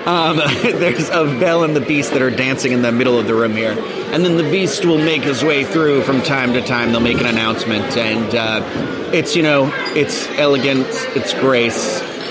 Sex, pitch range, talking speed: male, 130-165 Hz, 210 wpm